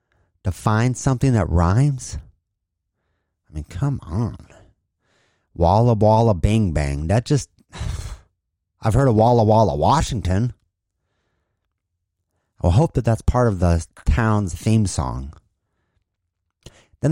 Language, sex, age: English, male, 30-49